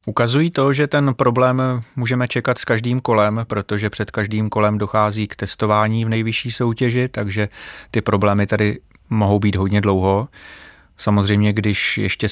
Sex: male